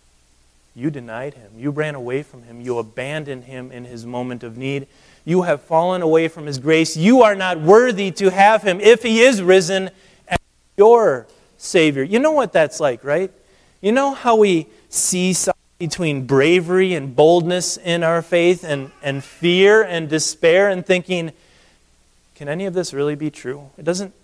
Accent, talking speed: American, 175 wpm